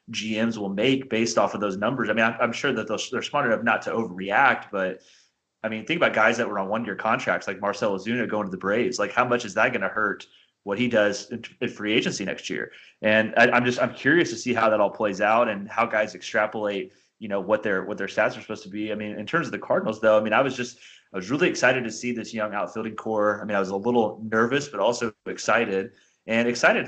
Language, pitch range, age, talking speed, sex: English, 105-120 Hz, 30-49, 260 wpm, male